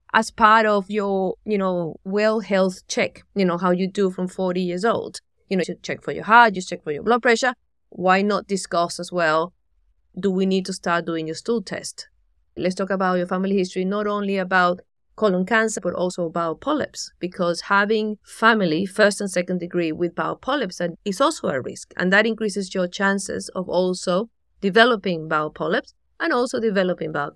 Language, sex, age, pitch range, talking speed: English, female, 30-49, 175-210 Hz, 195 wpm